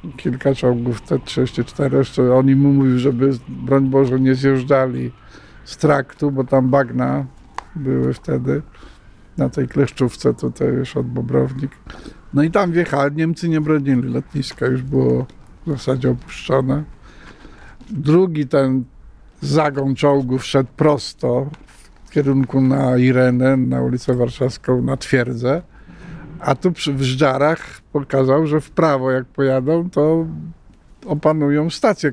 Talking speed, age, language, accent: 125 wpm, 50-69, Polish, native